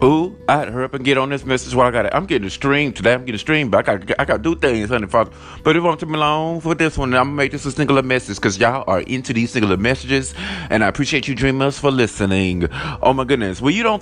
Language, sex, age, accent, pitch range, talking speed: English, male, 30-49, American, 130-165 Hz, 295 wpm